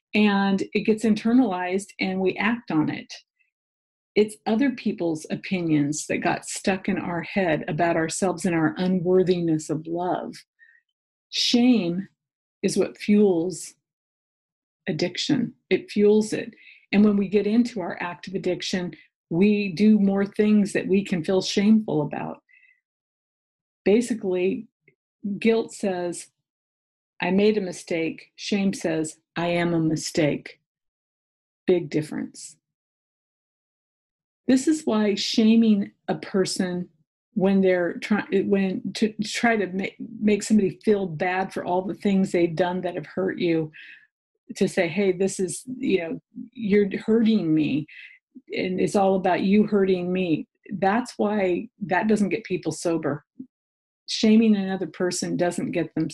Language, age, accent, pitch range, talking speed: English, 50-69, American, 175-215 Hz, 135 wpm